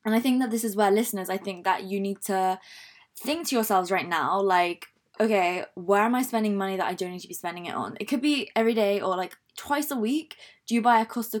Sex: female